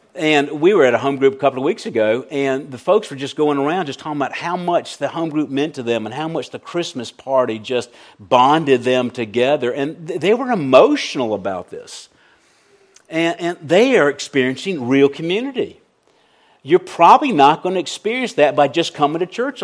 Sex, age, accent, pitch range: male, 50-69, American, 120-170 Hz